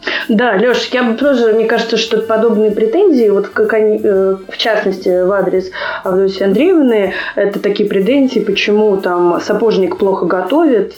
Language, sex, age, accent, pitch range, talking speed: Russian, female, 20-39, native, 185-230 Hz, 135 wpm